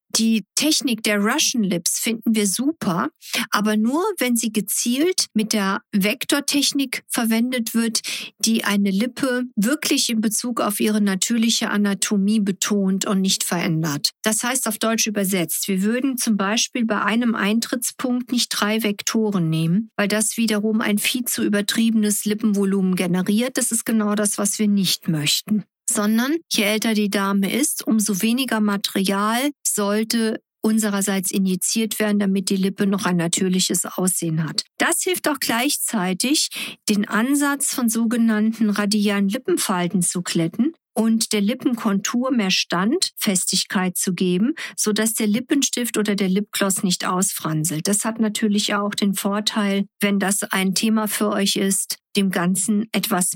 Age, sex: 50-69, female